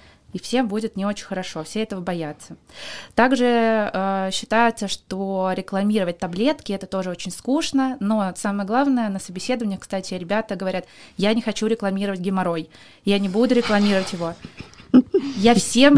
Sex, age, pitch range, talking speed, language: female, 20-39, 190-230 Hz, 145 wpm, Russian